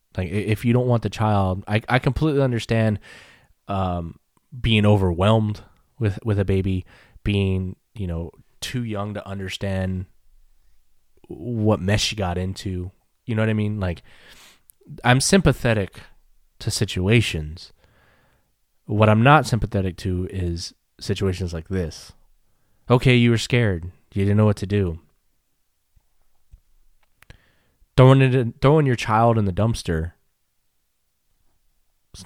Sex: male